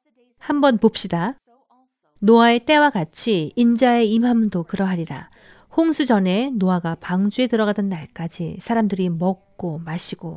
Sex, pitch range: female, 175-230 Hz